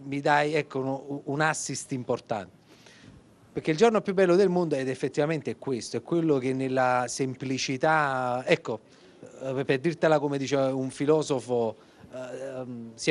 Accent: native